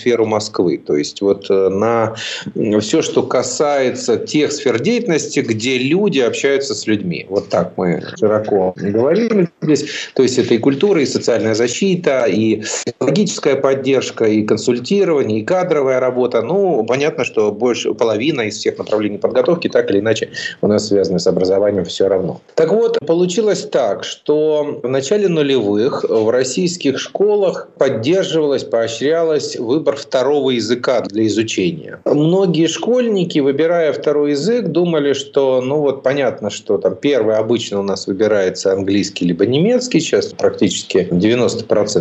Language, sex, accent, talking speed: Russian, male, native, 140 wpm